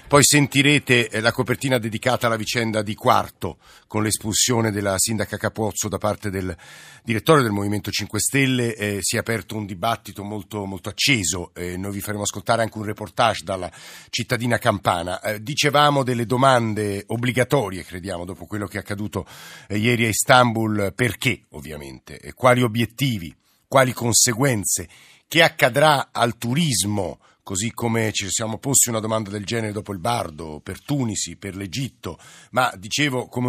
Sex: male